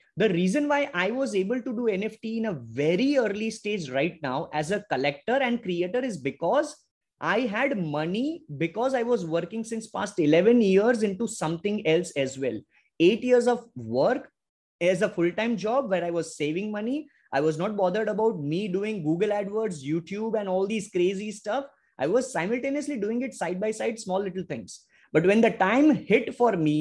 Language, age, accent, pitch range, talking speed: English, 20-39, Indian, 175-250 Hz, 185 wpm